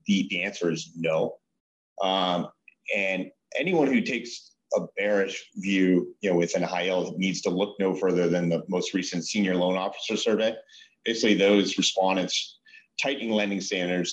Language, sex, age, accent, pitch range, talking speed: English, male, 40-59, American, 90-105 Hz, 160 wpm